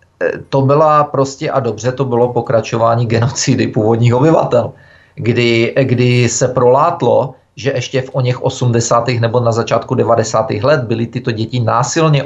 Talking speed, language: 140 wpm, Czech